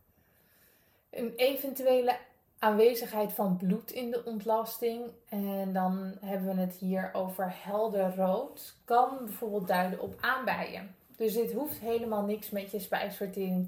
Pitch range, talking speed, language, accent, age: 185-220 Hz, 130 wpm, Dutch, Dutch, 20-39